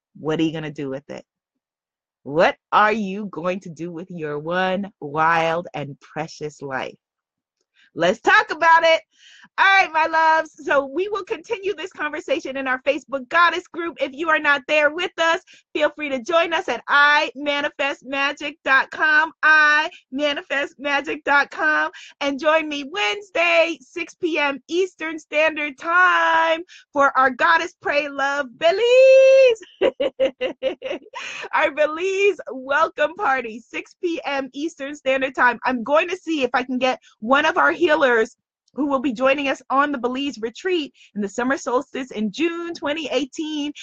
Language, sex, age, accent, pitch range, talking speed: English, female, 30-49, American, 225-325 Hz, 145 wpm